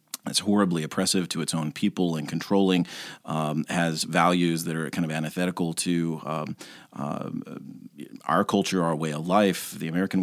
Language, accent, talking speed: English, American, 165 wpm